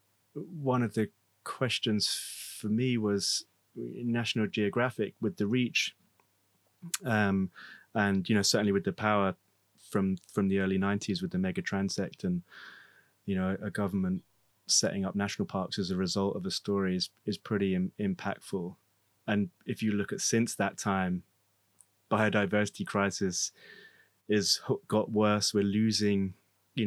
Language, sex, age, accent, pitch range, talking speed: English, male, 30-49, British, 95-110 Hz, 145 wpm